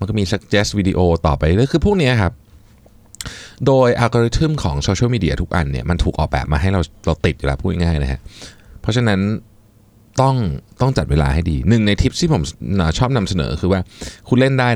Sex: male